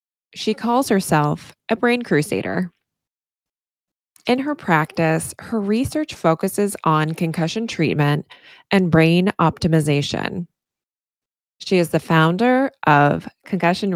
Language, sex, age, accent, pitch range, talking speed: English, female, 20-39, American, 155-205 Hz, 105 wpm